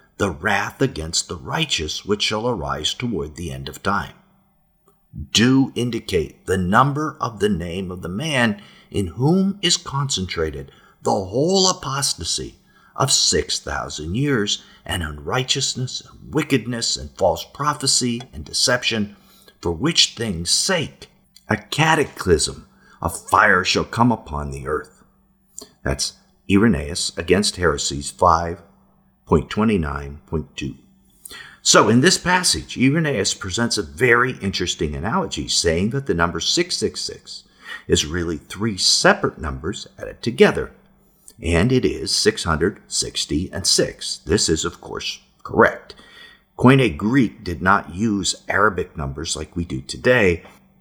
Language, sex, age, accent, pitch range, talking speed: English, male, 50-69, American, 85-135 Hz, 125 wpm